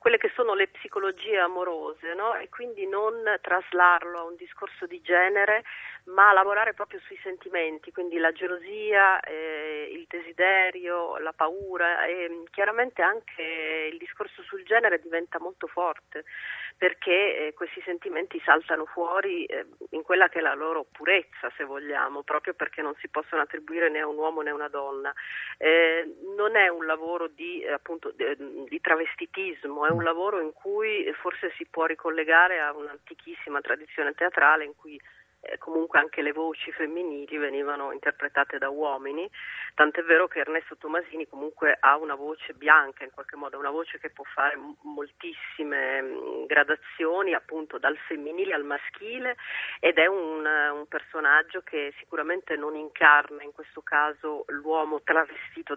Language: Italian